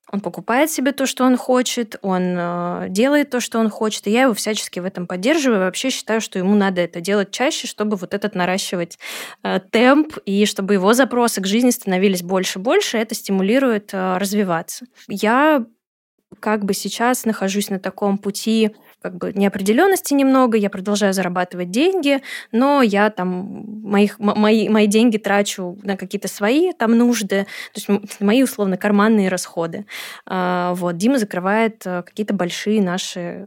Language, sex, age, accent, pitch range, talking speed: Russian, female, 20-39, native, 190-225 Hz, 160 wpm